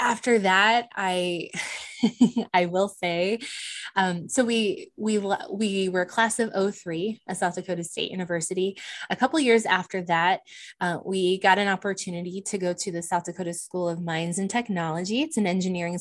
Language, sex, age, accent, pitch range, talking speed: English, female, 20-39, American, 175-215 Hz, 165 wpm